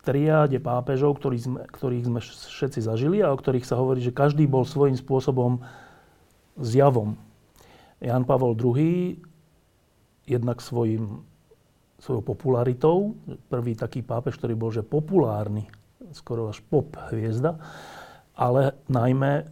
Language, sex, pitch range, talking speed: Slovak, male, 120-150 Hz, 125 wpm